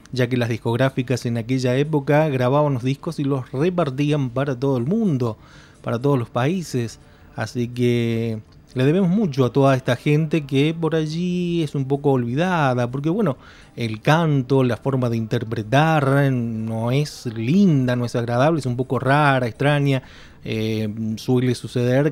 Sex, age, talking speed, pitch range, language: male, 30-49, 160 wpm, 115-145 Hz, Spanish